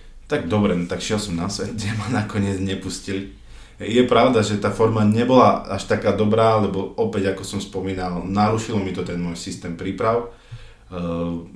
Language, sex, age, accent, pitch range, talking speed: Czech, male, 20-39, native, 85-100 Hz, 170 wpm